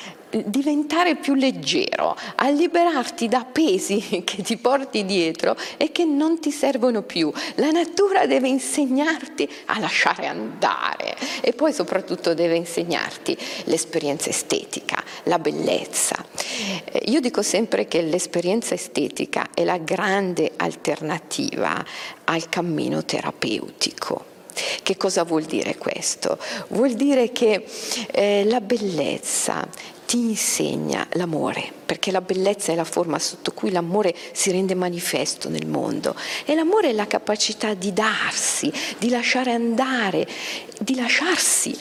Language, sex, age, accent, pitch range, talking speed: Italian, female, 40-59, native, 190-275 Hz, 125 wpm